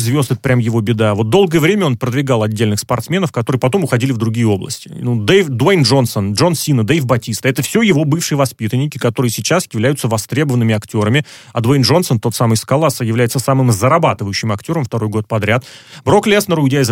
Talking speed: 190 wpm